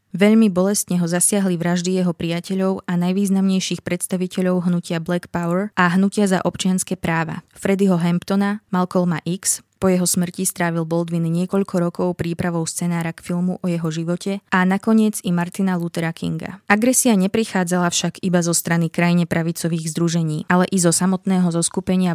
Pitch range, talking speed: 175-195 Hz, 150 wpm